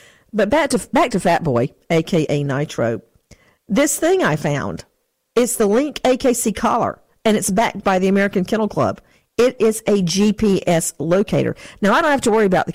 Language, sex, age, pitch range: English, female, 50-69, 165-230 Hz